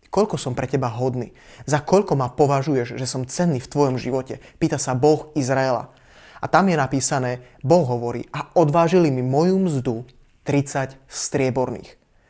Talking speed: 155 wpm